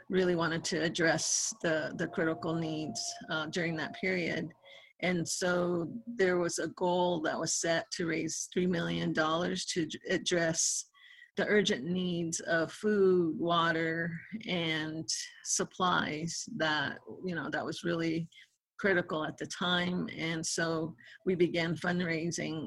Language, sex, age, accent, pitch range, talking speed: English, female, 50-69, American, 160-180 Hz, 135 wpm